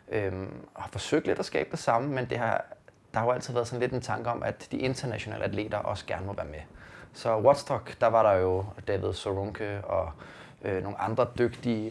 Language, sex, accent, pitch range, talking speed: Danish, male, native, 100-125 Hz, 220 wpm